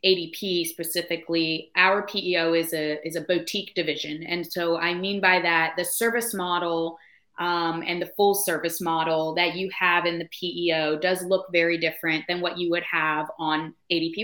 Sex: female